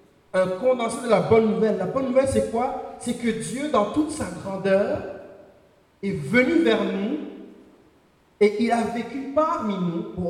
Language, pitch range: French, 170-215 Hz